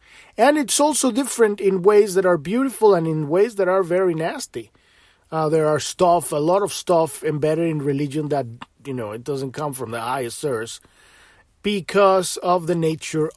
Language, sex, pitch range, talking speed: English, male, 140-195 Hz, 180 wpm